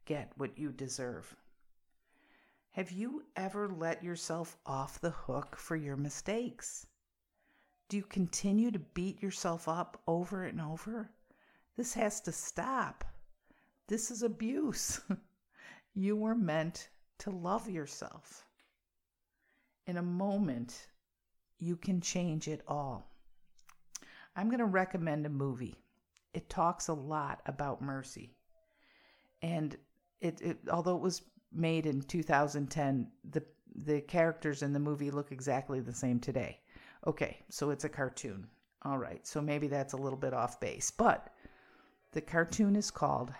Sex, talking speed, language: female, 135 wpm, English